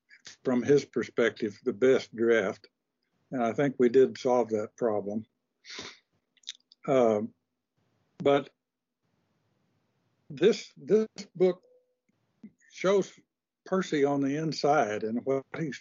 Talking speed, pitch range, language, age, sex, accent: 105 wpm, 125-170 Hz, English, 60-79, male, American